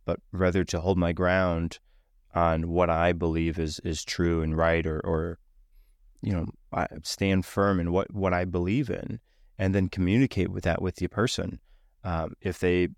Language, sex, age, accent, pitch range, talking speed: English, male, 20-39, American, 90-100 Hz, 175 wpm